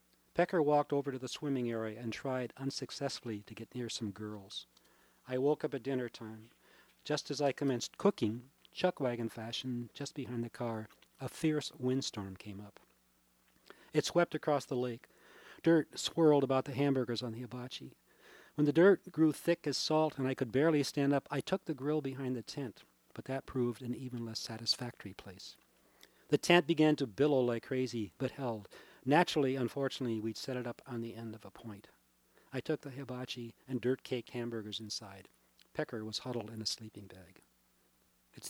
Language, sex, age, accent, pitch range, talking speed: English, male, 40-59, American, 110-140 Hz, 180 wpm